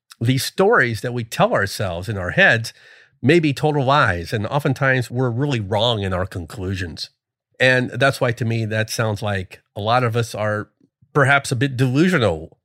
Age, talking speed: 40-59, 180 wpm